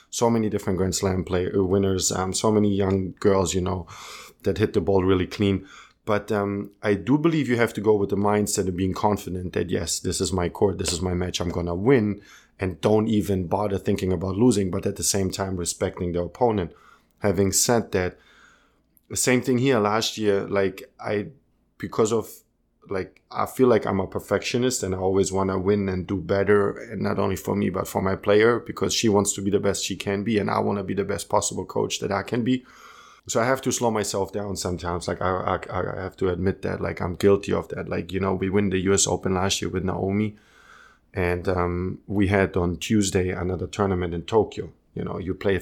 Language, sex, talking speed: English, male, 225 wpm